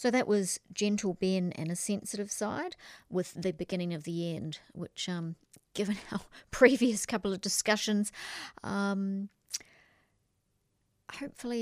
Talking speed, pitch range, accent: 130 wpm, 180-210 Hz, Australian